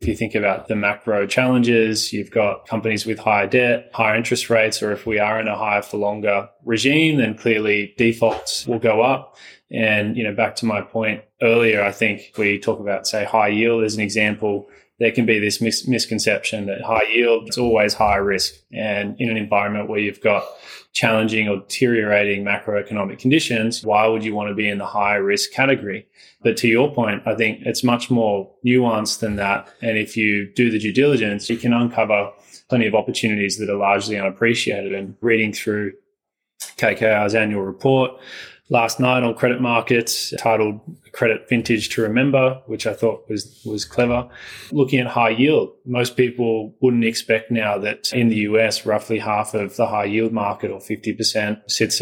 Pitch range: 105-120 Hz